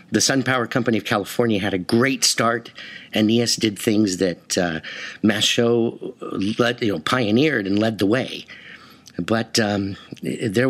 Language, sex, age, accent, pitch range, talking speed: English, male, 50-69, American, 105-135 Hz, 150 wpm